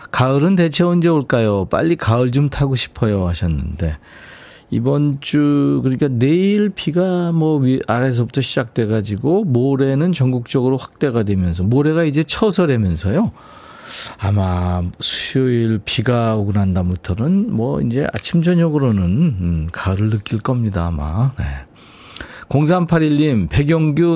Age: 40-59